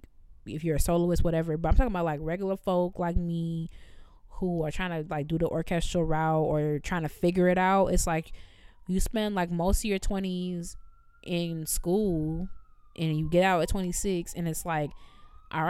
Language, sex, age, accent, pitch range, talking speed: English, female, 20-39, American, 165-205 Hz, 190 wpm